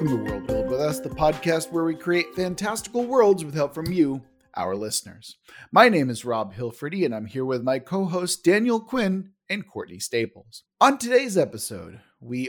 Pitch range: 120-175 Hz